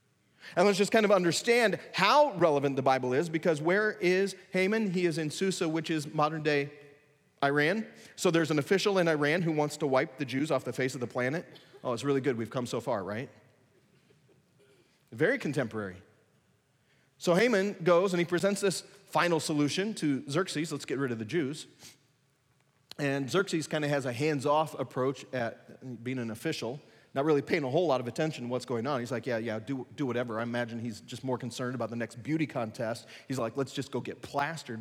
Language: English